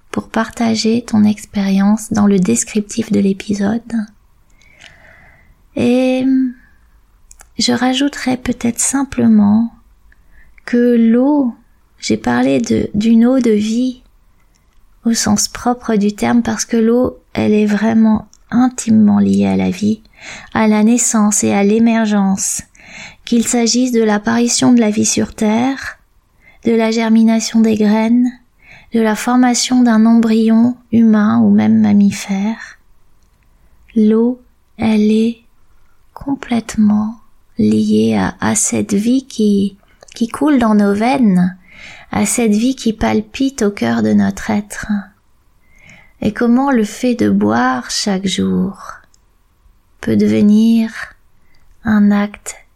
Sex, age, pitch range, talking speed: female, 20-39, 205-235 Hz, 120 wpm